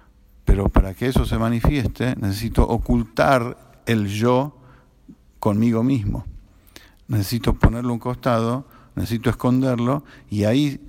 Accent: Argentinian